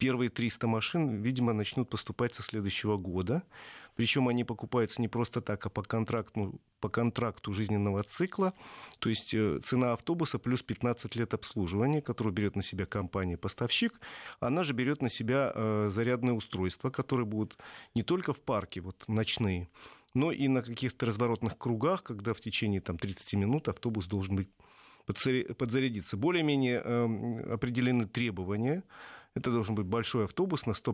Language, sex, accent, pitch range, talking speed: Russian, male, native, 105-125 Hz, 140 wpm